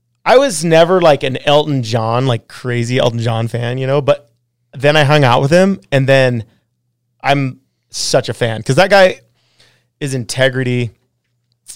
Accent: American